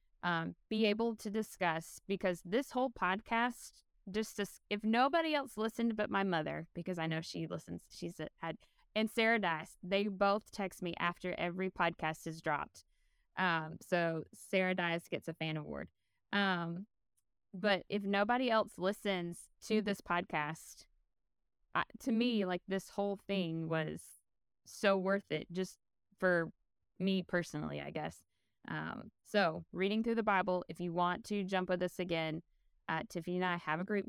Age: 20-39